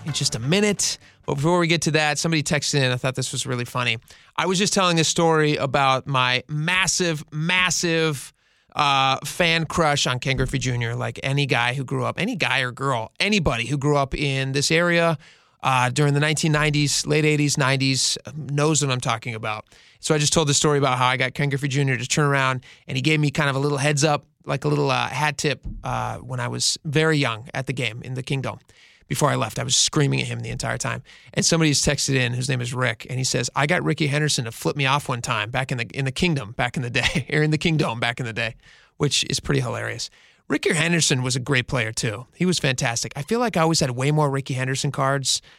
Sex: male